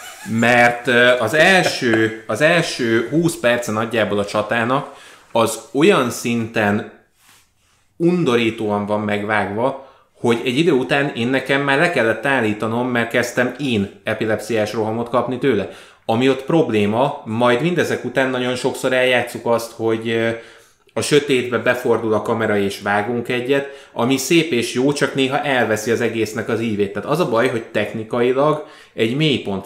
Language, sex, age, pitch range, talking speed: Hungarian, male, 20-39, 110-130 Hz, 145 wpm